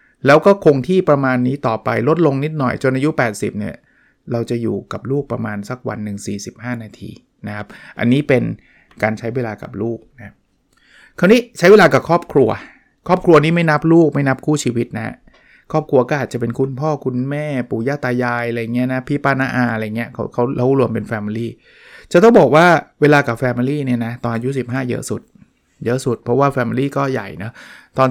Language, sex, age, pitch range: Thai, male, 20-39, 115-145 Hz